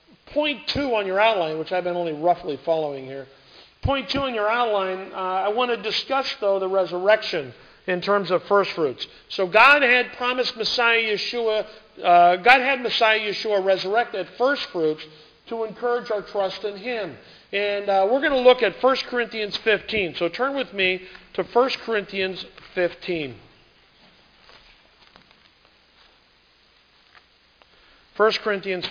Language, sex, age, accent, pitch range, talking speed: English, male, 50-69, American, 180-230 Hz, 145 wpm